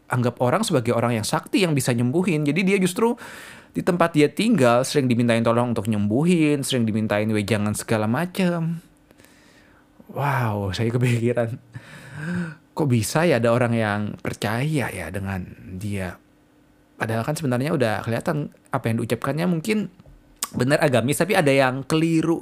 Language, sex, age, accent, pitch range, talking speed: Indonesian, male, 20-39, native, 115-165 Hz, 145 wpm